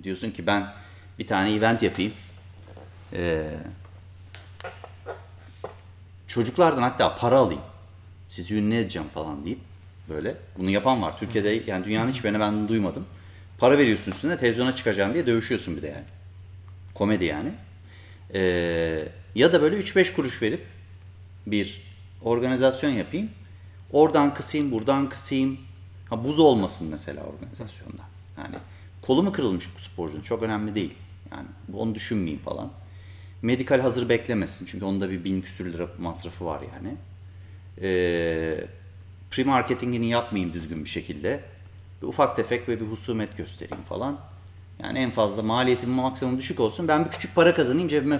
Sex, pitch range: male, 95-120 Hz